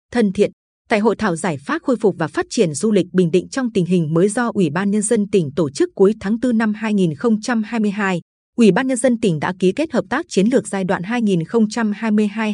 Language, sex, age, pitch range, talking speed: Vietnamese, female, 20-39, 180-225 Hz, 230 wpm